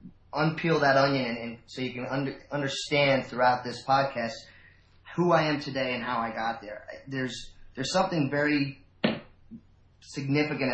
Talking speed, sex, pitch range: 145 wpm, male, 115-140 Hz